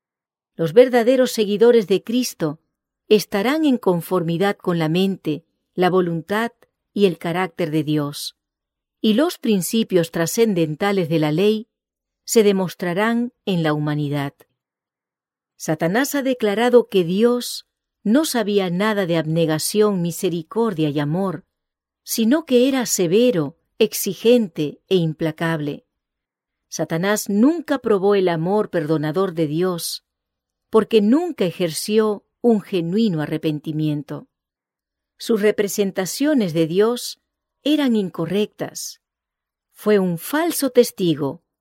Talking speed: 105 wpm